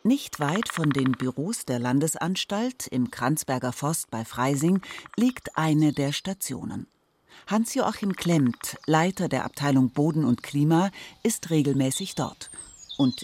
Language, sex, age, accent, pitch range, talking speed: German, female, 40-59, German, 135-180 Hz, 125 wpm